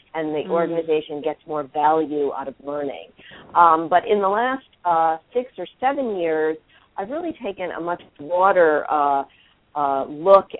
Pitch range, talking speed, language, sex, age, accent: 155-180 Hz, 160 wpm, English, female, 50-69, American